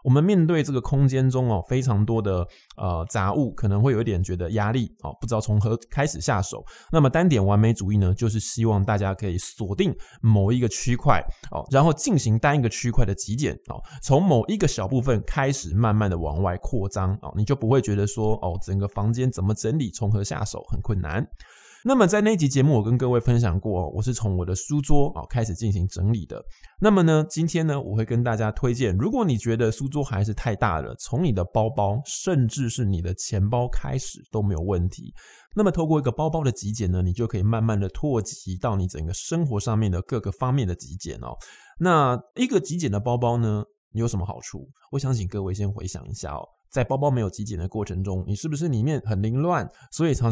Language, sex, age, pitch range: Chinese, male, 20-39, 100-135 Hz